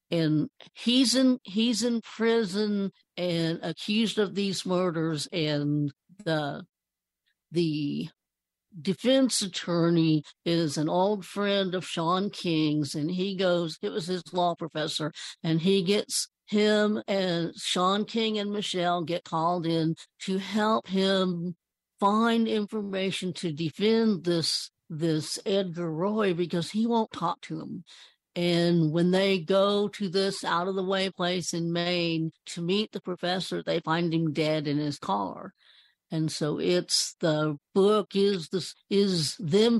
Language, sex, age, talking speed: English, female, 60-79, 135 wpm